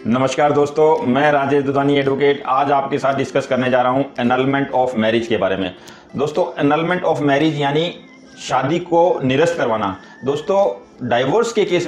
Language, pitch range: Hindi, 135-165 Hz